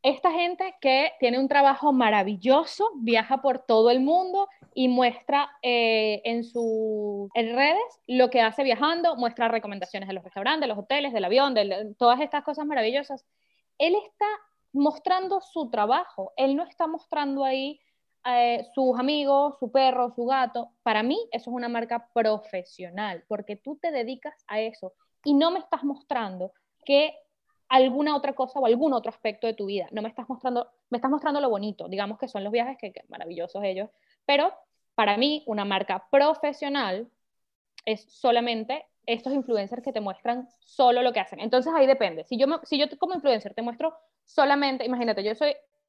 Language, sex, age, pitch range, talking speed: Spanish, female, 10-29, 225-290 Hz, 175 wpm